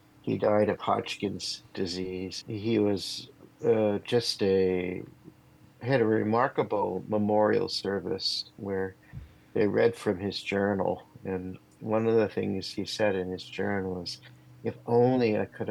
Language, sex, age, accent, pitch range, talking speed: English, male, 50-69, American, 95-110 Hz, 140 wpm